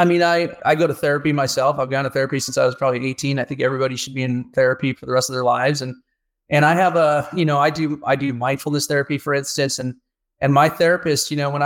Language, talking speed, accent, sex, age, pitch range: English, 270 wpm, American, male, 30-49, 130-165 Hz